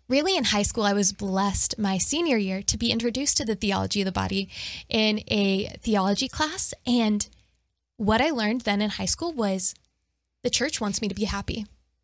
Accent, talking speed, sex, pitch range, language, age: American, 195 wpm, female, 195-240 Hz, English, 10-29